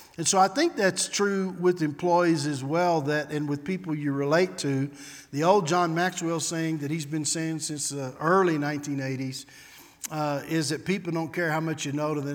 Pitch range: 140-160 Hz